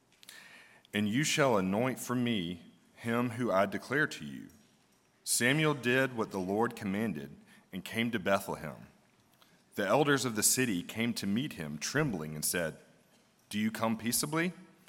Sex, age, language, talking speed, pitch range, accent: male, 40-59, English, 155 wpm, 95-130 Hz, American